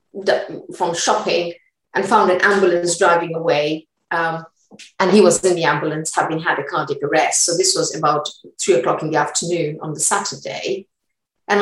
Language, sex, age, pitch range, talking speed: English, female, 50-69, 180-235 Hz, 170 wpm